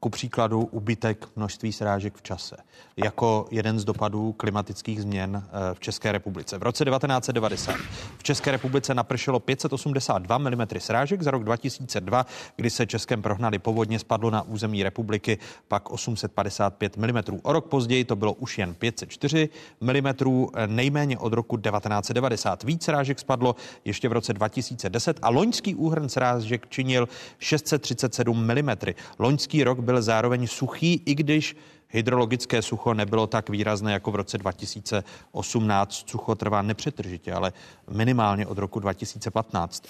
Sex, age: male, 30-49